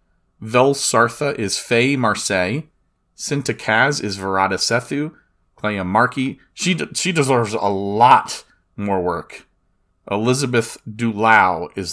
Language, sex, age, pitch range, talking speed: English, male, 30-49, 105-140 Hz, 115 wpm